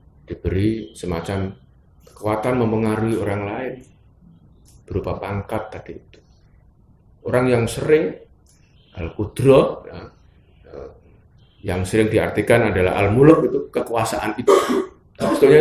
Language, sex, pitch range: Indonesian, male, 85-115 Hz